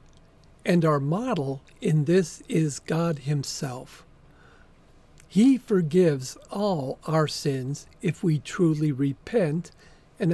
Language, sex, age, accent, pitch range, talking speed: English, male, 50-69, American, 150-185 Hz, 105 wpm